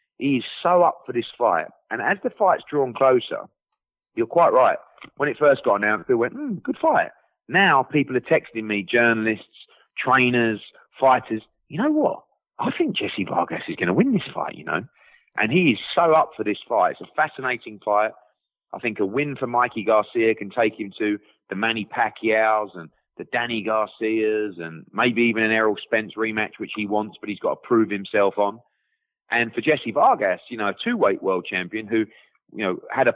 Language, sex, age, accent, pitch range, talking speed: English, male, 30-49, British, 100-135 Hz, 200 wpm